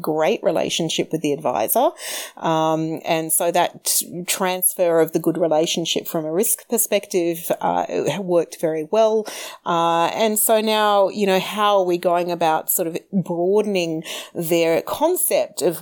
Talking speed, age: 150 wpm, 30-49